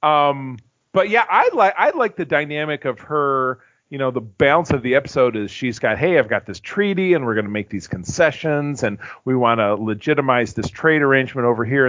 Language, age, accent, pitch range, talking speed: English, 40-59, American, 115-160 Hz, 215 wpm